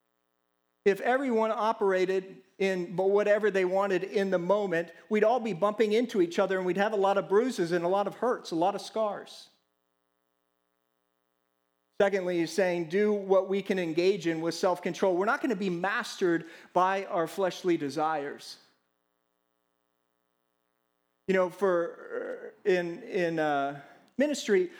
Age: 40-59